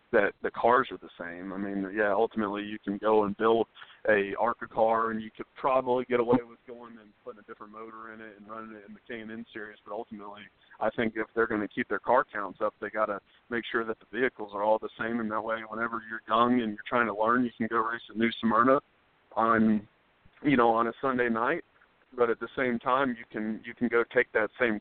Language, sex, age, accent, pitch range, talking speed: English, male, 40-59, American, 110-120 Hz, 250 wpm